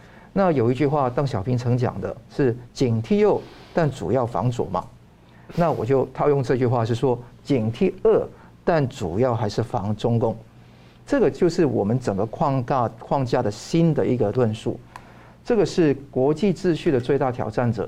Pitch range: 120-155 Hz